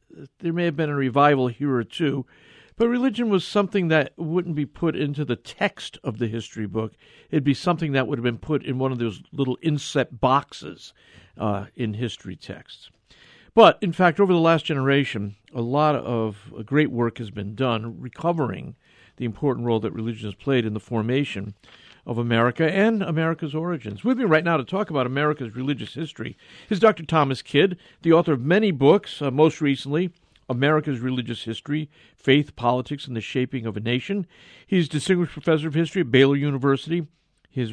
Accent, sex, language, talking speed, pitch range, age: American, male, English, 190 wpm, 120-165 Hz, 50-69